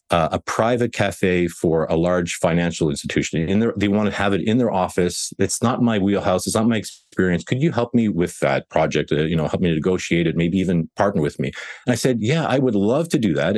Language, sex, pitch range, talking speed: English, male, 85-115 Hz, 245 wpm